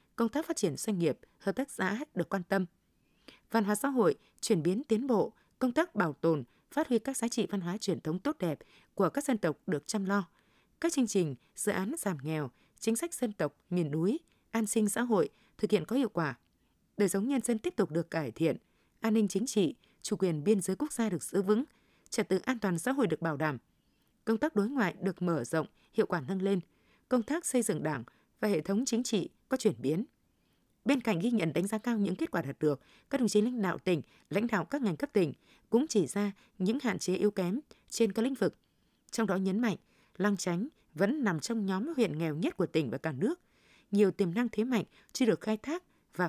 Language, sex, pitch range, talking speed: Vietnamese, female, 175-230 Hz, 235 wpm